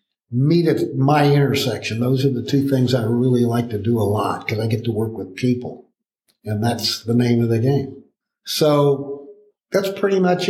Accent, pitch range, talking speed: American, 125-150 Hz, 195 wpm